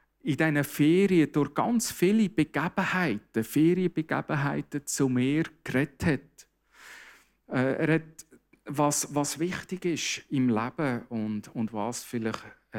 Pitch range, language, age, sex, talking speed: 125-165 Hz, German, 50-69, male, 115 wpm